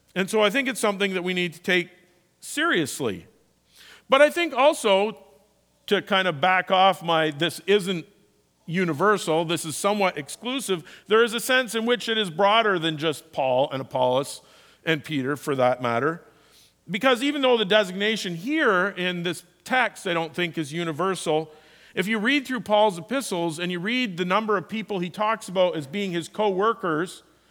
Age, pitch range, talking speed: 50-69, 165-205 Hz, 180 wpm